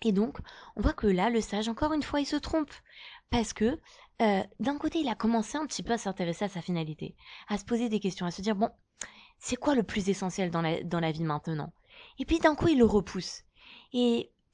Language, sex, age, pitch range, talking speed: French, female, 20-39, 195-260 Hz, 240 wpm